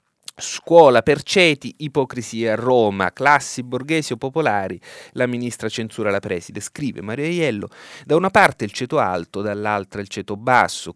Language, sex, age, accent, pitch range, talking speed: Italian, male, 30-49, native, 100-130 Hz, 155 wpm